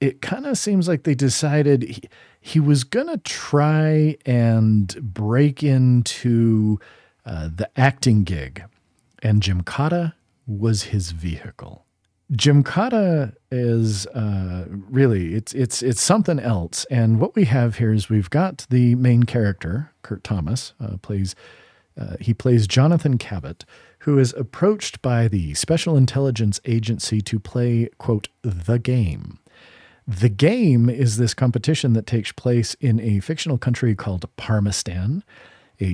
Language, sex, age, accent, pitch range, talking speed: English, male, 40-59, American, 105-140 Hz, 140 wpm